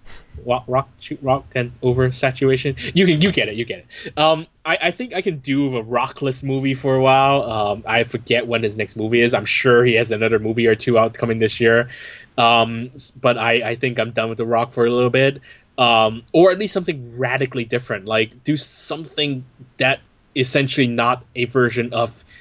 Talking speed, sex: 210 wpm, male